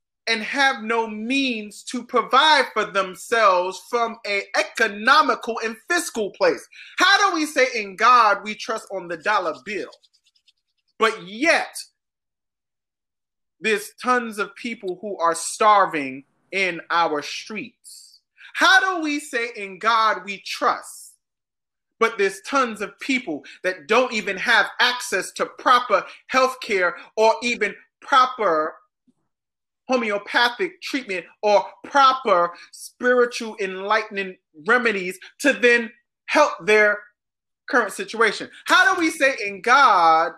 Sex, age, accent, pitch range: male, 30-49, American, 195-260 Hz